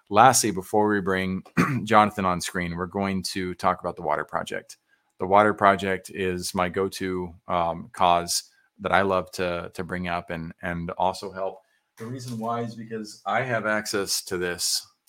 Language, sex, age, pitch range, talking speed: English, male, 30-49, 85-100 Hz, 175 wpm